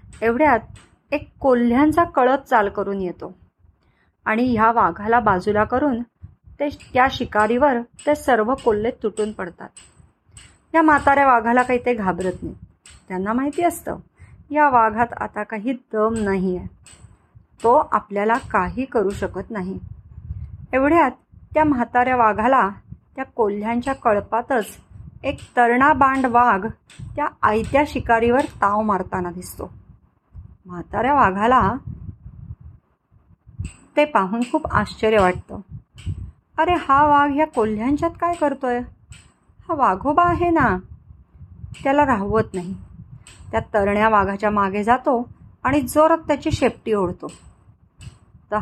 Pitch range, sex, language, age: 200-275 Hz, female, Marathi, 30-49